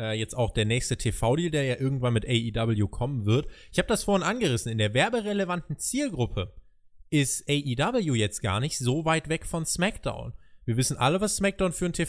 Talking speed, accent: 190 wpm, German